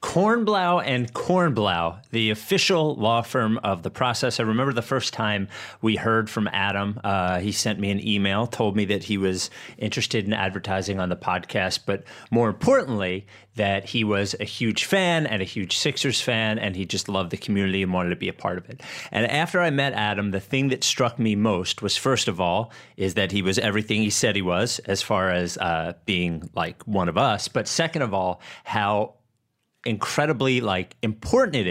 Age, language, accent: 30-49, English, American